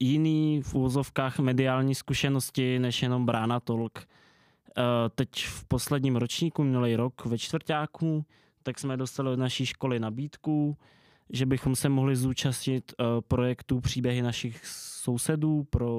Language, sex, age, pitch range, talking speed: Czech, male, 20-39, 120-135 Hz, 130 wpm